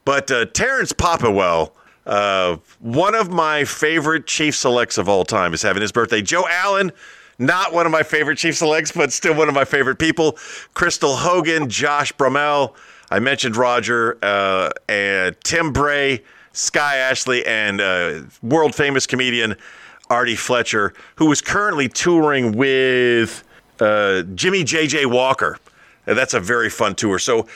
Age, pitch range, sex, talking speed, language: 40-59, 120-160 Hz, male, 150 wpm, English